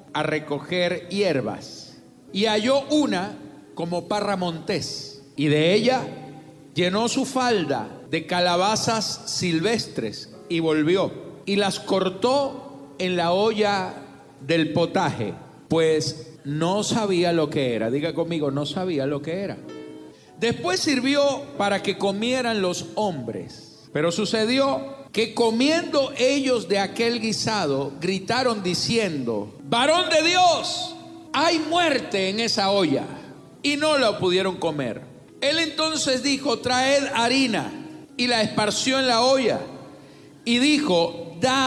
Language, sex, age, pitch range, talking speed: Spanish, male, 50-69, 165-250 Hz, 120 wpm